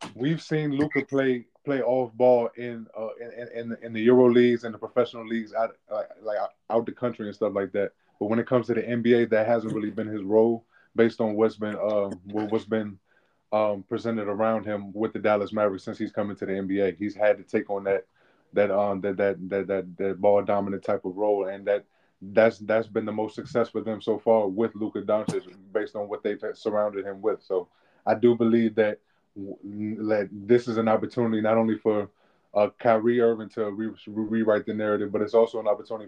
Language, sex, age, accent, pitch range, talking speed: English, male, 20-39, American, 105-115 Hz, 220 wpm